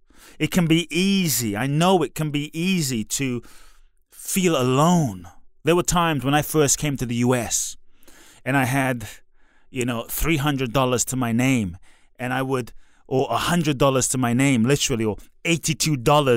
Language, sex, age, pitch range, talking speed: English, male, 30-49, 120-165 Hz, 155 wpm